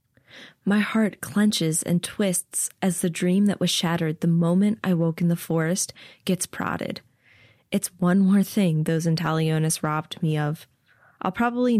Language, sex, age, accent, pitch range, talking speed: English, female, 20-39, American, 155-195 Hz, 160 wpm